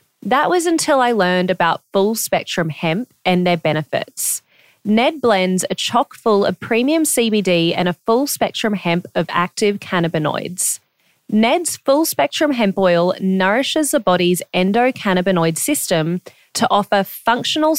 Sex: female